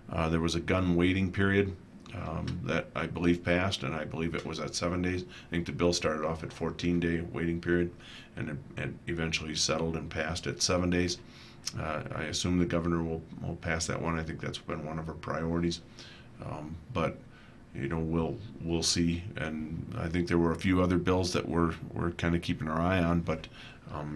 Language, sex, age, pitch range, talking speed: English, male, 40-59, 80-90 Hz, 210 wpm